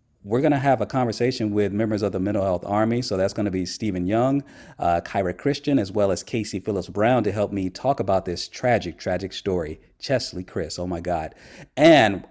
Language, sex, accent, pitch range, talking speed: English, male, American, 100-140 Hz, 215 wpm